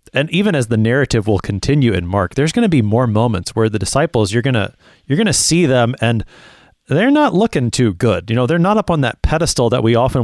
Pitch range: 105-140 Hz